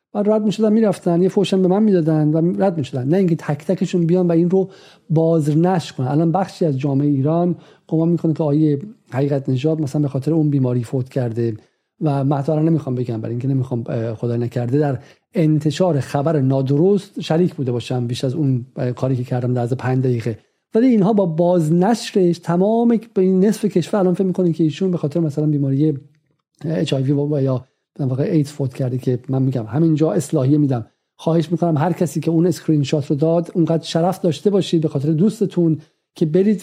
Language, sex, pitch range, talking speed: Persian, male, 140-180 Hz, 195 wpm